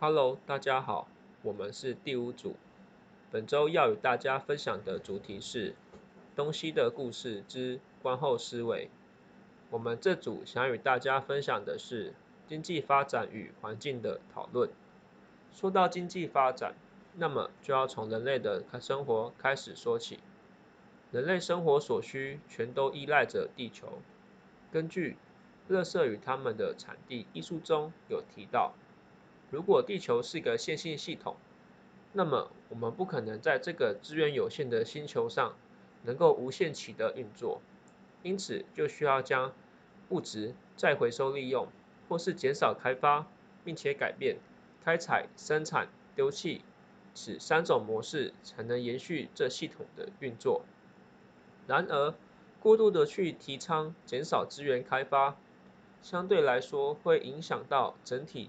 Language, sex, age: Chinese, male, 20-39